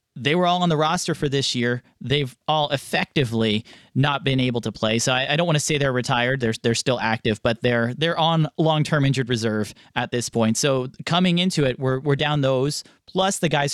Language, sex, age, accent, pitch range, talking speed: English, male, 30-49, American, 120-150 Hz, 225 wpm